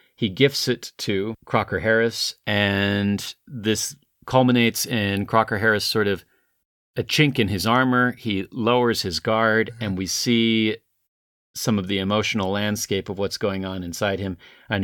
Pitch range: 100-120 Hz